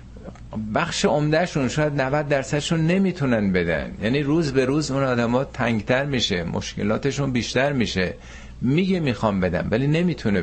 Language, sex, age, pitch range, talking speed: Persian, male, 50-69, 100-150 Hz, 140 wpm